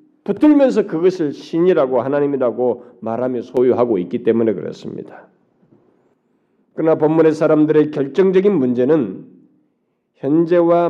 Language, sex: Korean, male